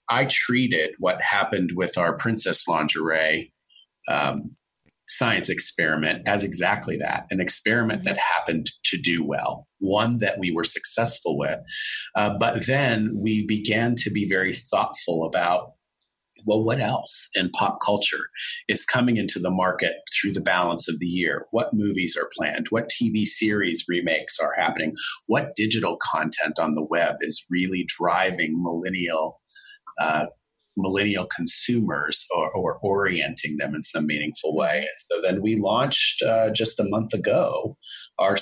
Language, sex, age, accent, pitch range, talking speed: English, male, 30-49, American, 90-115 Hz, 150 wpm